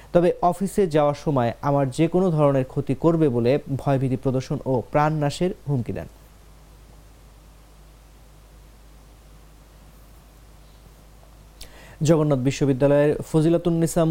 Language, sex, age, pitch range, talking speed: English, male, 30-49, 130-160 Hz, 90 wpm